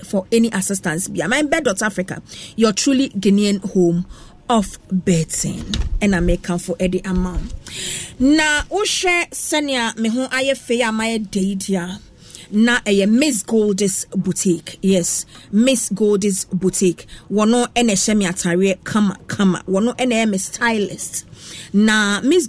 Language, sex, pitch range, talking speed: English, female, 190-260 Hz, 135 wpm